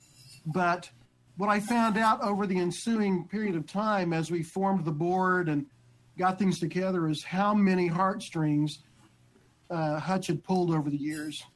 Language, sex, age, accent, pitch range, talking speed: English, male, 50-69, American, 155-195 Hz, 160 wpm